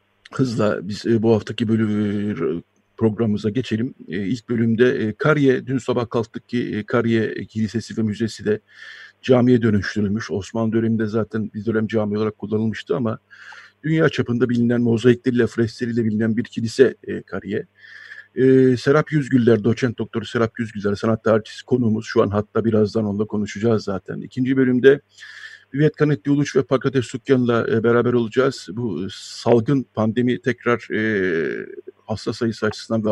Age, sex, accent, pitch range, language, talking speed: 50-69, male, native, 110-125 Hz, Turkish, 135 wpm